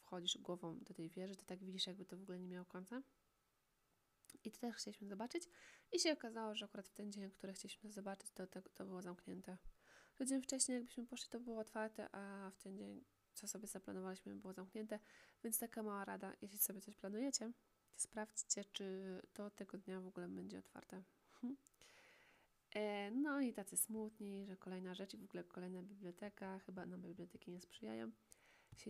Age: 20-39